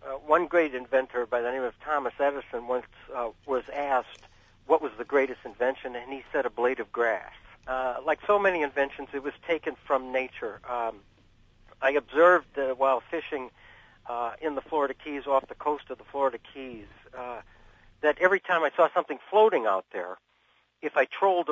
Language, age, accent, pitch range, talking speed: English, 60-79, American, 125-155 Hz, 185 wpm